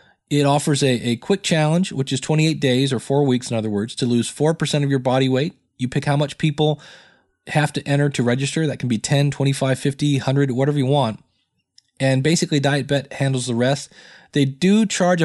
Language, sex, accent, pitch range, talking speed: English, male, American, 120-150 Hz, 205 wpm